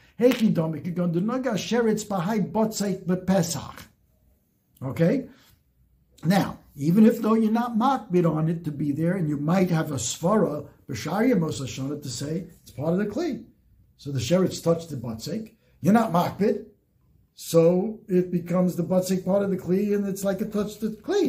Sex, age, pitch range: male, 60-79, 150-205 Hz